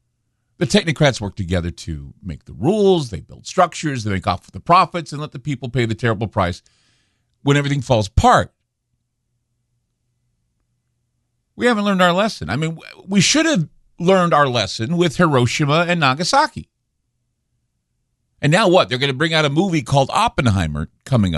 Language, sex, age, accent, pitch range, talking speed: English, male, 50-69, American, 115-160 Hz, 165 wpm